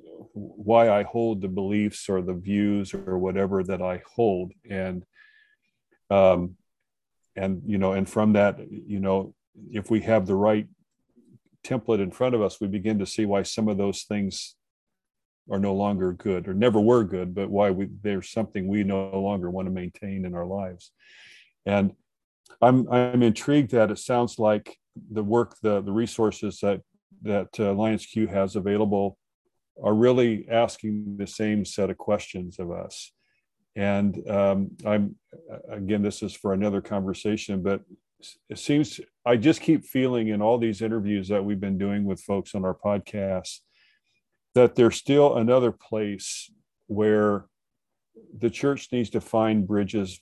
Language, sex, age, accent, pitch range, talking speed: English, male, 40-59, American, 100-110 Hz, 160 wpm